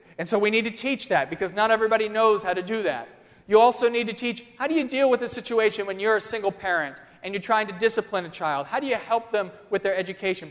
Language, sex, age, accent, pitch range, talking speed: English, male, 40-59, American, 185-230 Hz, 270 wpm